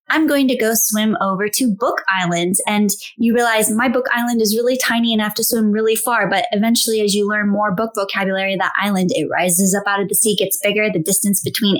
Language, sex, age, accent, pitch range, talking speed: English, female, 20-39, American, 195-245 Hz, 240 wpm